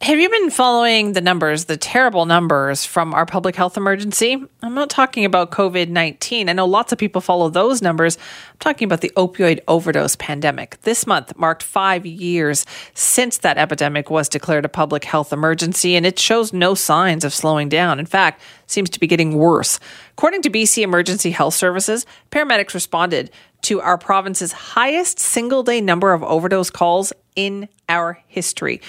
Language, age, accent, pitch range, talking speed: English, 40-59, American, 155-205 Hz, 175 wpm